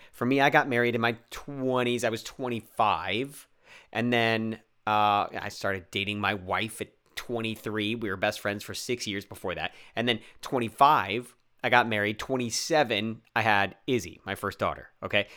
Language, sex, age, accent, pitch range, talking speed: English, male, 30-49, American, 110-135 Hz, 170 wpm